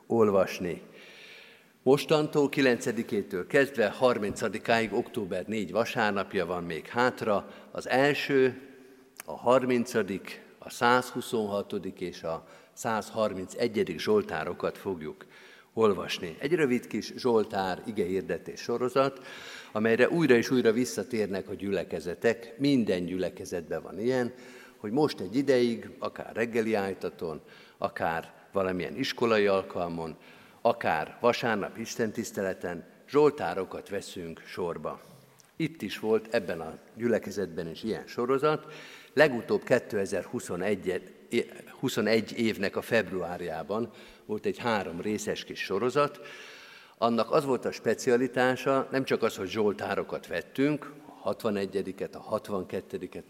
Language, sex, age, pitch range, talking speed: Hungarian, male, 50-69, 105-135 Hz, 105 wpm